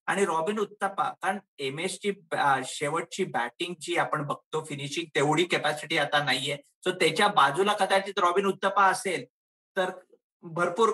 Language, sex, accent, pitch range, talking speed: Marathi, male, native, 165-205 Hz, 145 wpm